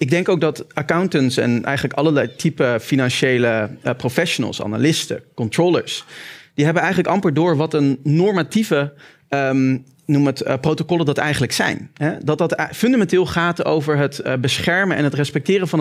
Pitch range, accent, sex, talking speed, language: 135-170 Hz, Dutch, male, 145 wpm, Dutch